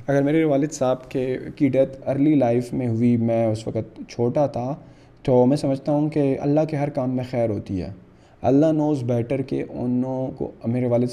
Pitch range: 120-150 Hz